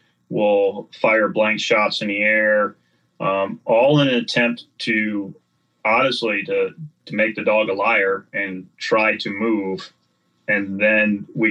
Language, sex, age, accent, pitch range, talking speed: English, male, 30-49, American, 100-115 Hz, 145 wpm